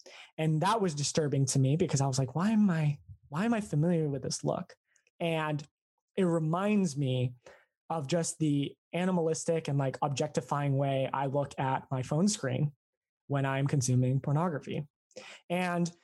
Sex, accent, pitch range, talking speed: male, American, 135-175 Hz, 160 wpm